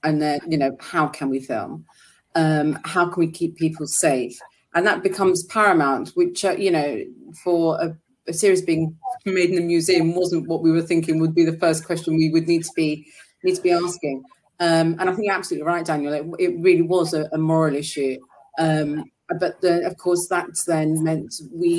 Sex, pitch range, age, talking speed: female, 160-195 Hz, 30-49, 210 wpm